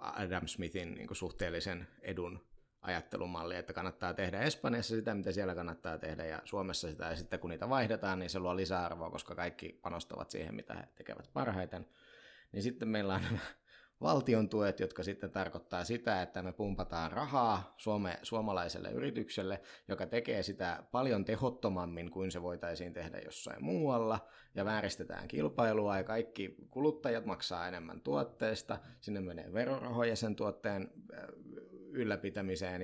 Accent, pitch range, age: native, 90-110 Hz, 20-39